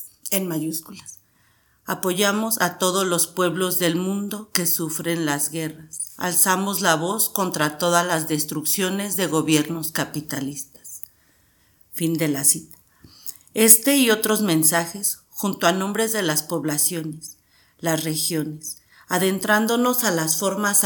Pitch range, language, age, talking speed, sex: 160-200 Hz, Spanish, 40-59, 125 wpm, female